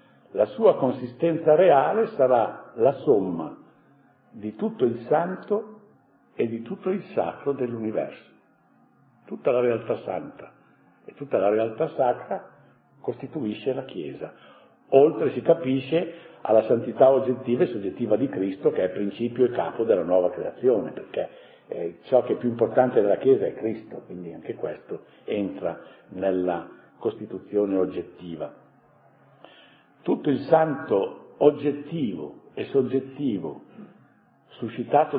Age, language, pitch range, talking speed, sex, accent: 60-79, Italian, 110-150 Hz, 125 wpm, male, native